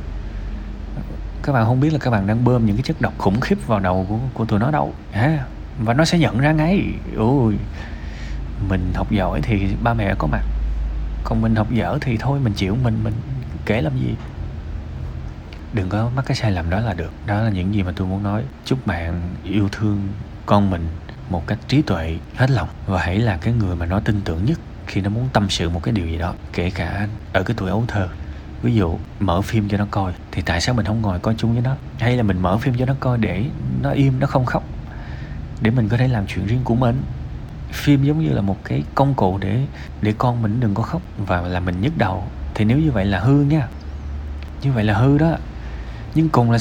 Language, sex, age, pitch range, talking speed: Vietnamese, male, 20-39, 85-120 Hz, 235 wpm